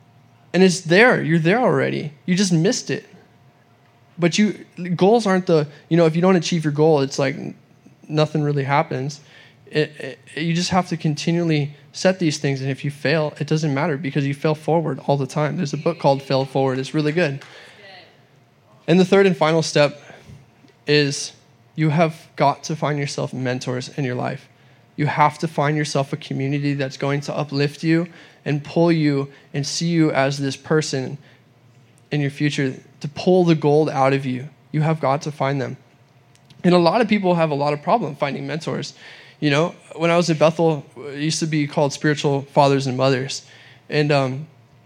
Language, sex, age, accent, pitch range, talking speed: English, male, 10-29, American, 135-170 Hz, 190 wpm